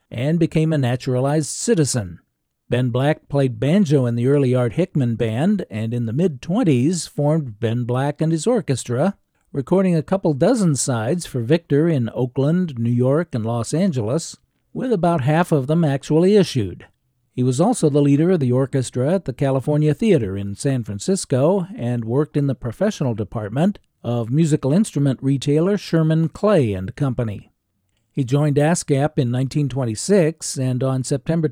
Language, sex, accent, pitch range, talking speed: English, male, American, 125-165 Hz, 155 wpm